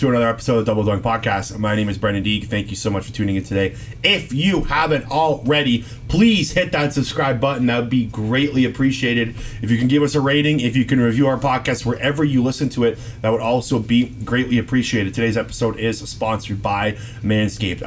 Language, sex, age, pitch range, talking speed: English, male, 30-49, 115-145 Hz, 220 wpm